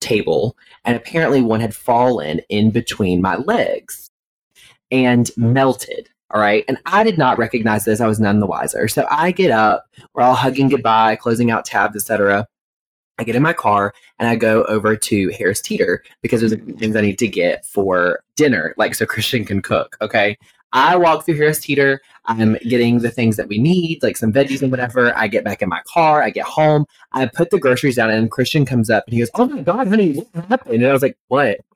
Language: English